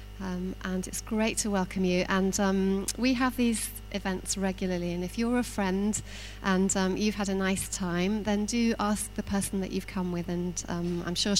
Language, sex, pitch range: English, female, 175-205 Hz